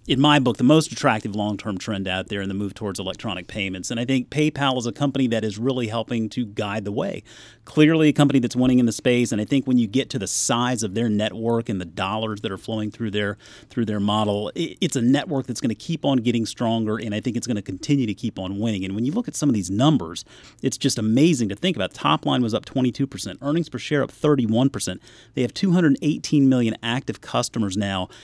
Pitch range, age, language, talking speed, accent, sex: 105-135 Hz, 30-49, English, 245 wpm, American, male